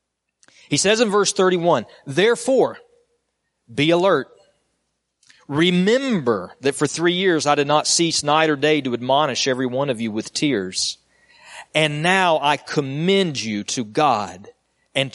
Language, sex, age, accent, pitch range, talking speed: English, male, 40-59, American, 120-185 Hz, 145 wpm